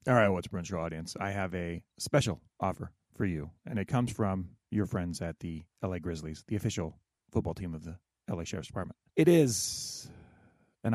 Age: 30-49